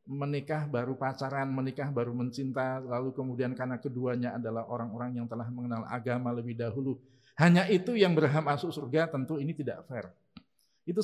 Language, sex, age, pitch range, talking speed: Indonesian, male, 50-69, 120-160 Hz, 160 wpm